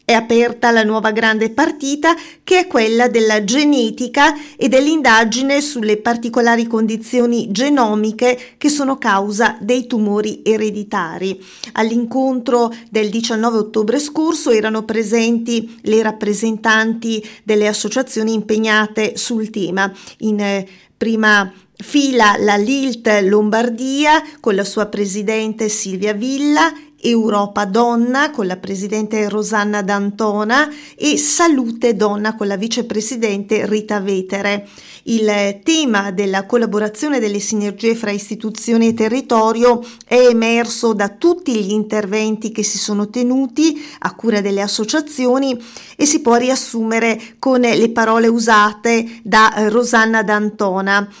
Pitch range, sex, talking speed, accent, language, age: 210-245 Hz, female, 115 wpm, native, Italian, 40-59